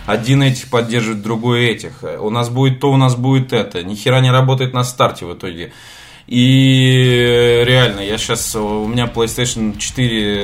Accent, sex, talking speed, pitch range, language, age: native, male, 160 wpm, 105-130 Hz, Russian, 20-39